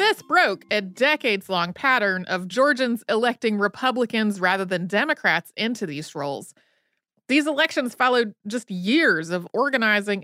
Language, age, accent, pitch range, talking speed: English, 30-49, American, 195-255 Hz, 130 wpm